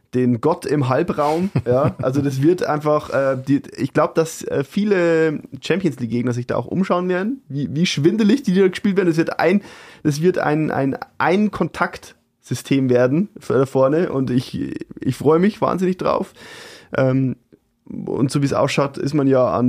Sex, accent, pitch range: male, German, 135-170 Hz